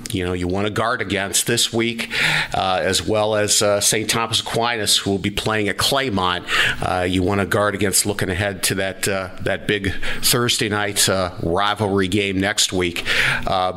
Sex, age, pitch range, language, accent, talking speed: male, 50-69, 90-110 Hz, English, American, 190 wpm